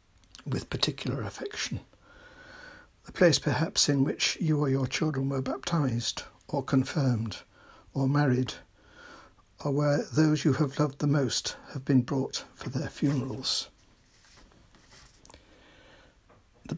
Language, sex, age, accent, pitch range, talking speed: English, male, 60-79, British, 130-145 Hz, 120 wpm